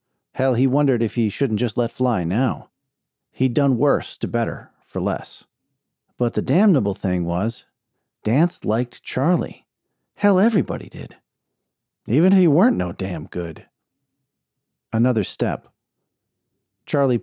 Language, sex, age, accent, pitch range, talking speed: English, male, 40-59, American, 100-135 Hz, 130 wpm